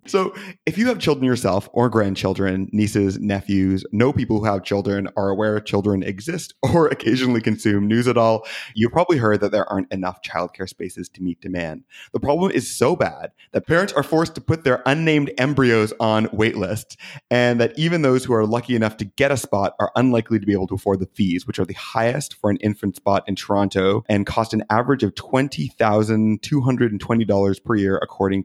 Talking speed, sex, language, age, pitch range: 200 wpm, male, English, 30-49, 100-125 Hz